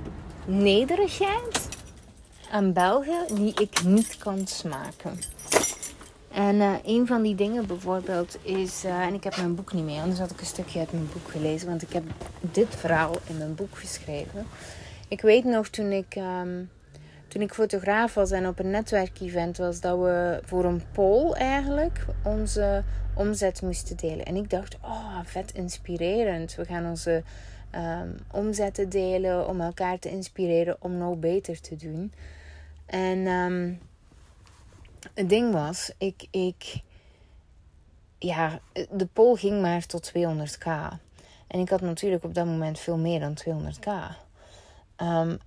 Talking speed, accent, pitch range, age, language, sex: 150 wpm, Dutch, 155-195 Hz, 30-49, Dutch, female